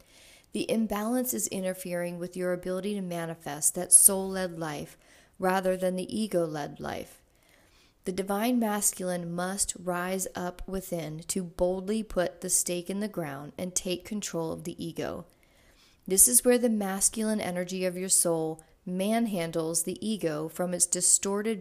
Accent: American